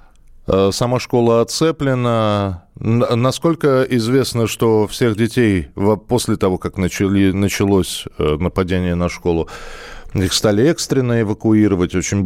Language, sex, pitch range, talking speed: Russian, male, 90-120 Hz, 100 wpm